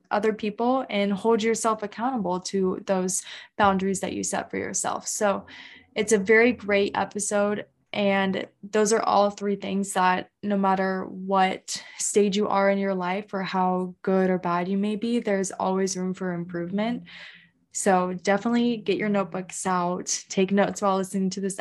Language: English